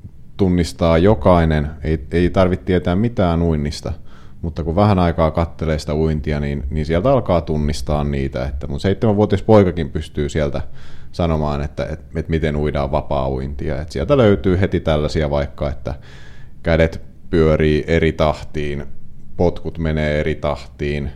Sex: male